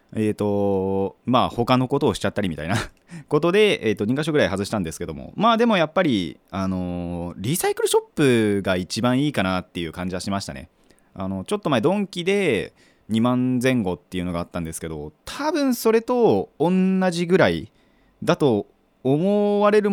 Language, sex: Japanese, male